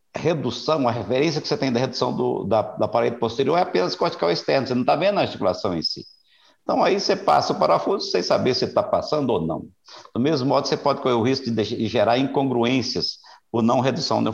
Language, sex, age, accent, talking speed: Portuguese, male, 60-79, Brazilian, 230 wpm